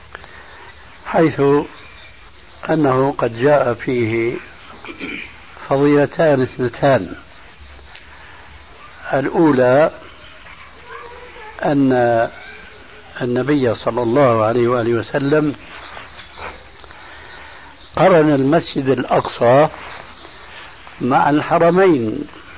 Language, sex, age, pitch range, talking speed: Arabic, male, 60-79, 115-145 Hz, 55 wpm